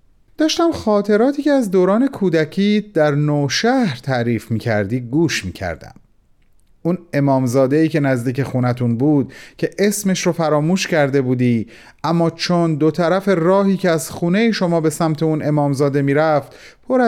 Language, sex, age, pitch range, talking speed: Persian, male, 40-59, 140-180 Hz, 140 wpm